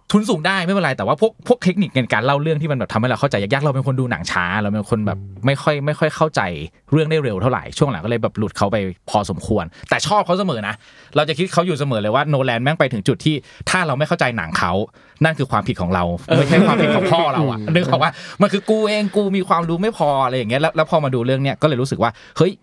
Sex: male